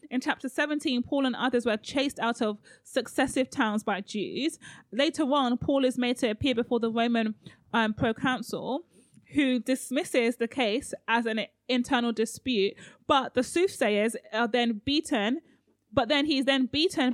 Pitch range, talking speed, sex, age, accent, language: 225-275 Hz, 160 wpm, female, 30-49, British, English